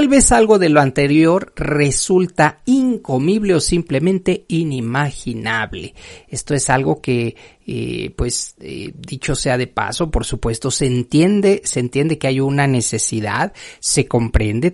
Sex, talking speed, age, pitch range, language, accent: male, 140 wpm, 40-59, 120-165 Hz, Spanish, Mexican